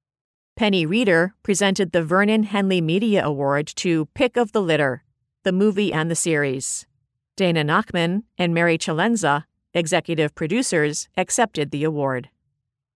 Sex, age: female, 40-59